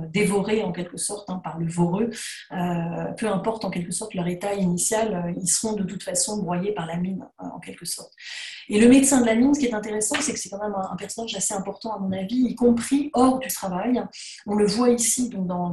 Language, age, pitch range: French, 30-49, 185-230 Hz